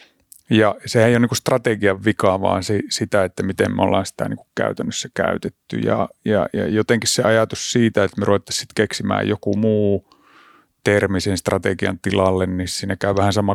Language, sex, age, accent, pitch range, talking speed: Finnish, male, 30-49, native, 100-120 Hz, 175 wpm